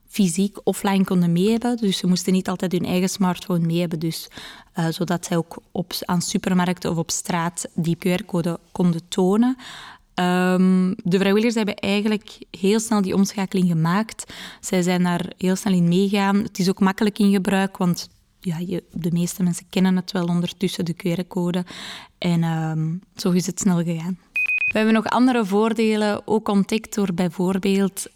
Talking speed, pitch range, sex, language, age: 175 wpm, 175-205 Hz, female, Dutch, 20-39